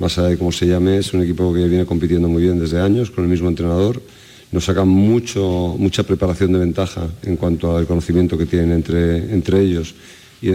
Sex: male